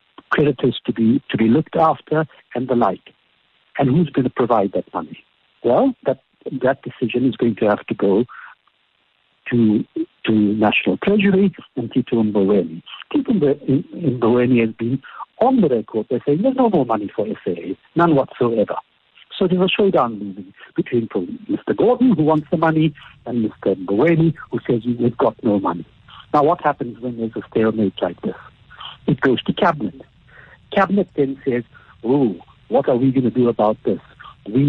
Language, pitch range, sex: English, 115-160 Hz, male